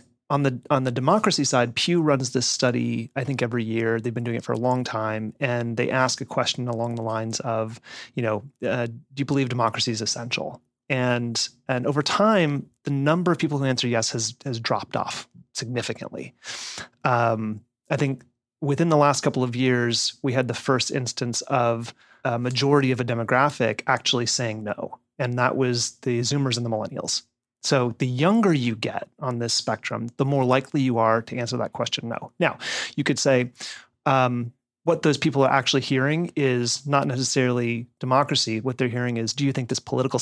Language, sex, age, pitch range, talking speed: English, male, 30-49, 120-140 Hz, 190 wpm